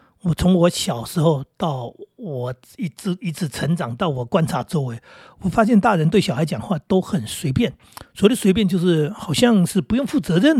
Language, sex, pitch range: Chinese, male, 145-215 Hz